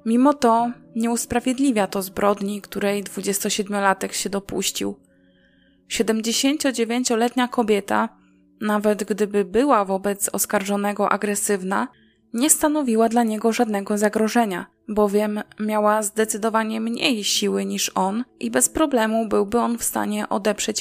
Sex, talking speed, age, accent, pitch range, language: female, 110 wpm, 20-39, native, 200-235 Hz, Polish